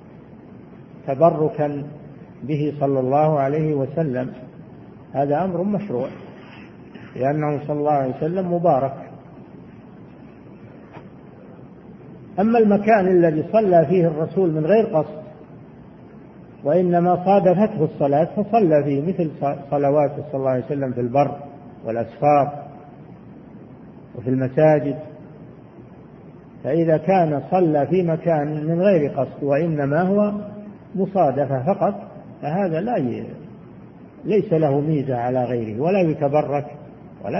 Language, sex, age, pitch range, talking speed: Arabic, male, 50-69, 140-170 Hz, 100 wpm